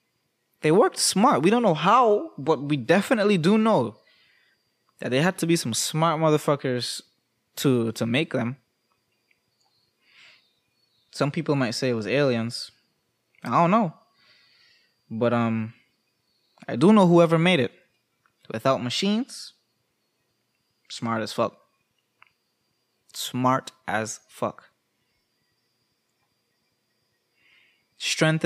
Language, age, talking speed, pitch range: English, 20-39, 110 wpm, 120-155 Hz